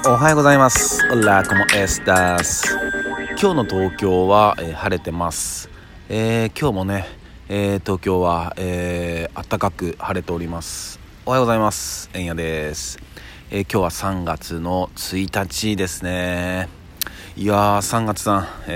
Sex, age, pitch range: male, 40-59, 85-100 Hz